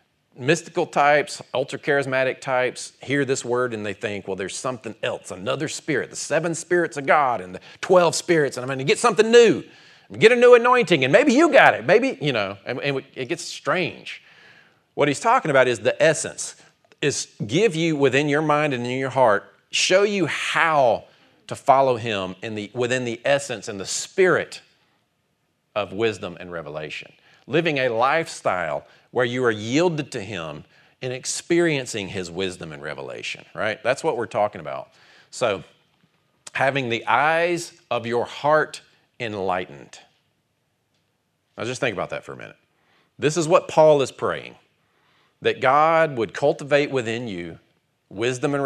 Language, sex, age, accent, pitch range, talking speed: English, male, 40-59, American, 120-165 Hz, 165 wpm